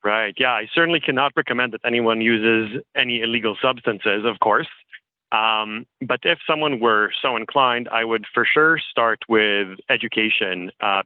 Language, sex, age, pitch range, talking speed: English, male, 30-49, 105-125 Hz, 155 wpm